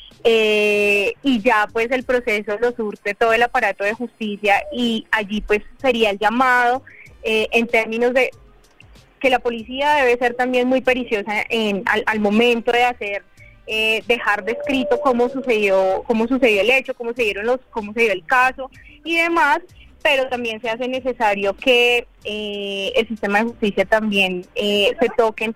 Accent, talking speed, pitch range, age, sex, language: Colombian, 170 wpm, 205-245 Hz, 10-29, female, Spanish